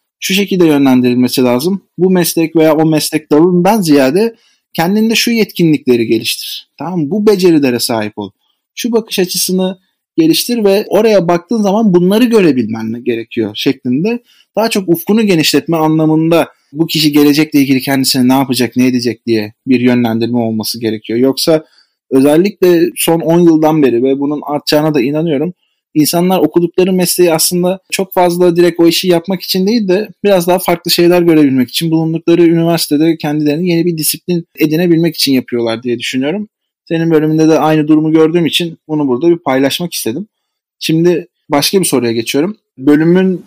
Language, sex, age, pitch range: Turkish, male, 30-49, 135-180 Hz